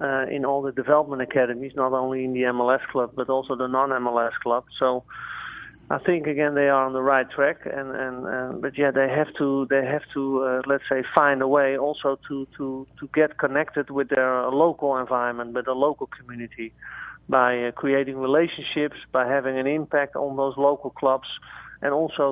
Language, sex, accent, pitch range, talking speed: English, male, Dutch, 130-145 Hz, 195 wpm